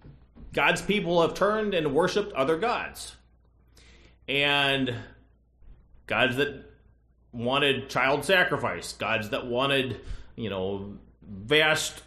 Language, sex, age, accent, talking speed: English, male, 30-49, American, 100 wpm